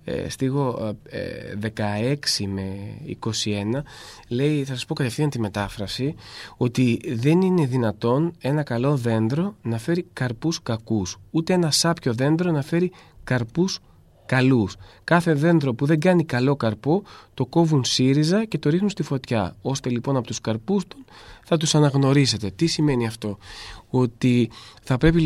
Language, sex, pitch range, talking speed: Greek, male, 115-165 Hz, 145 wpm